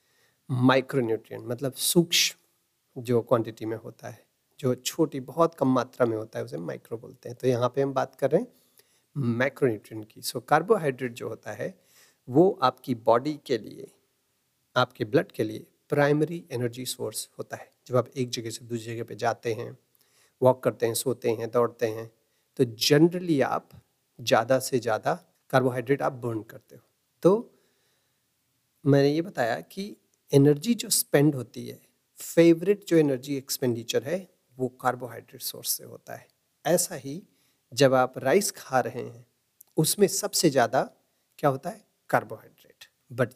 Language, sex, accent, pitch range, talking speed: Hindi, male, native, 120-150 Hz, 160 wpm